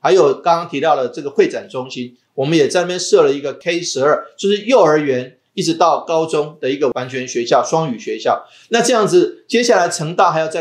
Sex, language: male, Chinese